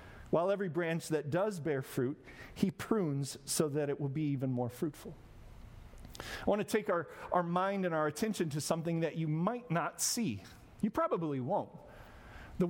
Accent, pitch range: American, 150-200 Hz